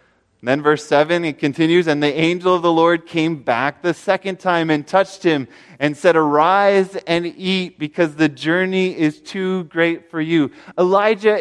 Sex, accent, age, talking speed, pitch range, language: male, American, 30-49, 175 wpm, 125-170 Hz, English